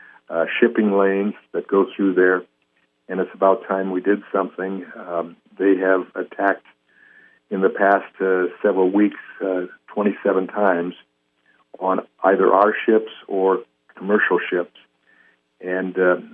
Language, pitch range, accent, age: English, 85-100 Hz, American, 60-79